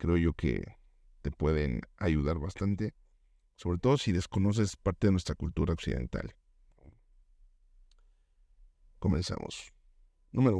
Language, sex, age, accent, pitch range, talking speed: Spanish, male, 50-69, Mexican, 75-100 Hz, 100 wpm